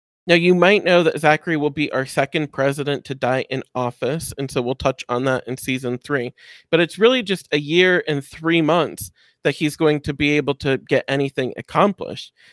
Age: 40-59